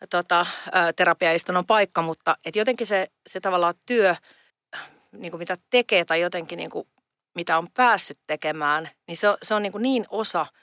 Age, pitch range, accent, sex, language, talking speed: 40-59, 165-215 Hz, native, female, Finnish, 160 wpm